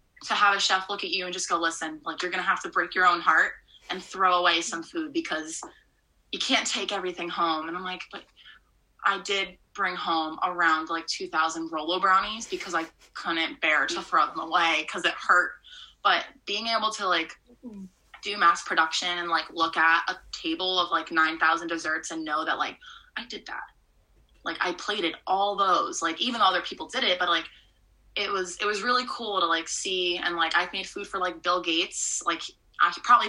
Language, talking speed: English, 205 wpm